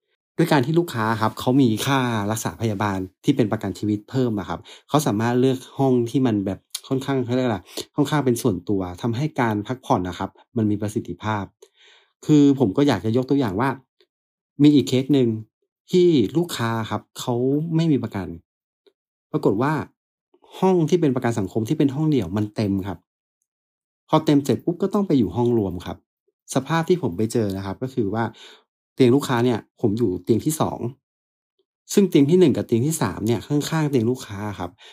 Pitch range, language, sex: 110-145 Hz, Thai, male